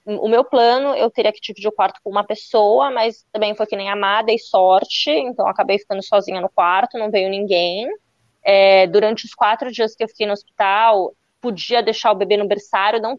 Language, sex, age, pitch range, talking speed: Portuguese, female, 20-39, 180-215 Hz, 225 wpm